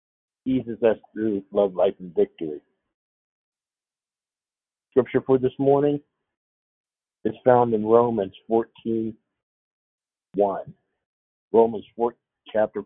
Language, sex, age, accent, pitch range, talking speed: English, male, 50-69, American, 100-120 Hz, 90 wpm